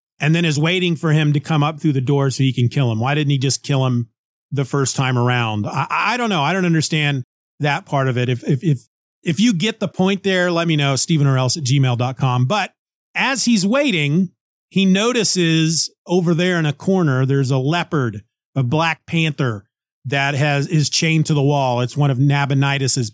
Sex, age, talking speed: male, 30-49, 215 wpm